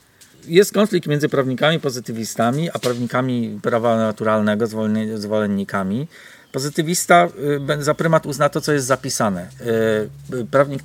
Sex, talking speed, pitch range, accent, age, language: male, 105 wpm, 125-155 Hz, native, 40-59, Polish